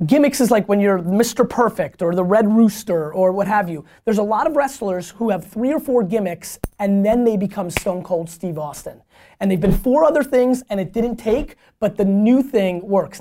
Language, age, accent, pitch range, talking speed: English, 30-49, American, 180-230 Hz, 225 wpm